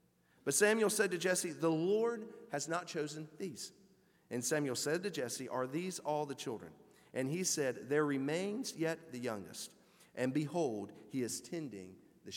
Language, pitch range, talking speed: English, 145-195 Hz, 170 wpm